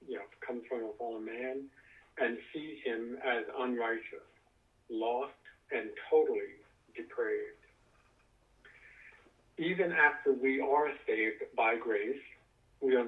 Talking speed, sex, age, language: 115 wpm, male, 50-69, English